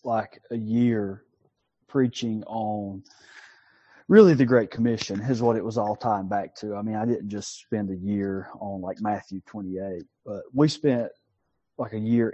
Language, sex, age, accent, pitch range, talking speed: English, male, 30-49, American, 105-130 Hz, 170 wpm